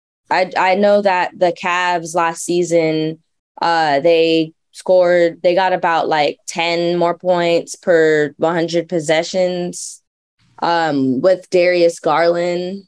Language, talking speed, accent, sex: English, 115 wpm, American, female